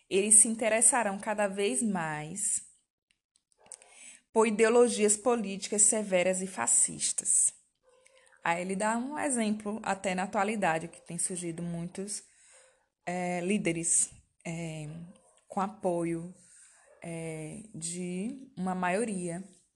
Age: 20-39